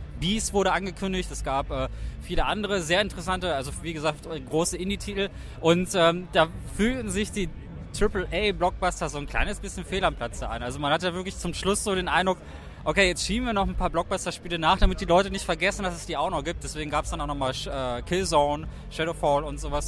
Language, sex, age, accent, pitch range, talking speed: German, male, 20-39, German, 145-190 Hz, 210 wpm